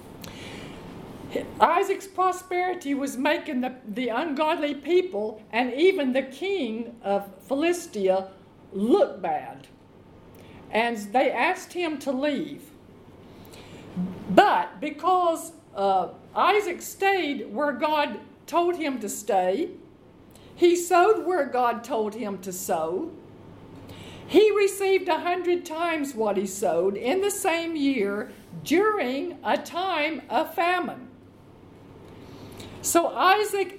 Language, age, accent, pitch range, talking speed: English, 50-69, American, 235-360 Hz, 105 wpm